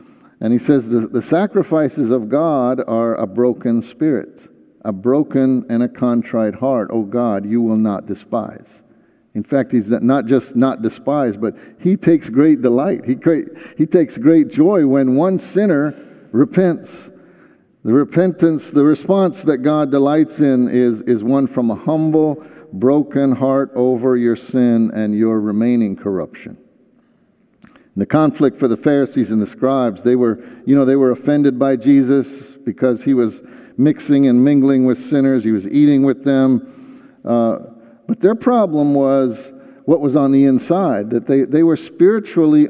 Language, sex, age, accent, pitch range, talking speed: English, male, 50-69, American, 120-155 Hz, 160 wpm